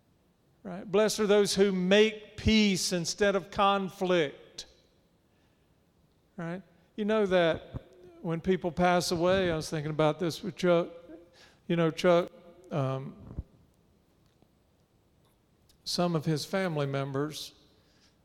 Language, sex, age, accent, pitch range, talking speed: English, male, 50-69, American, 150-180 Hz, 110 wpm